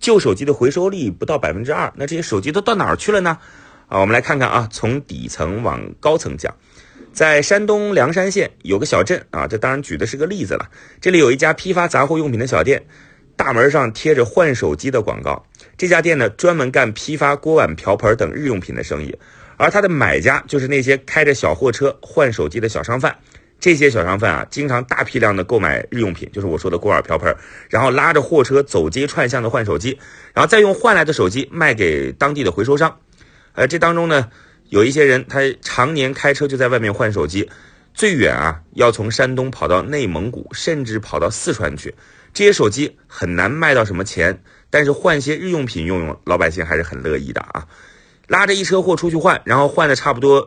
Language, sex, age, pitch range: Chinese, male, 30-49, 125-165 Hz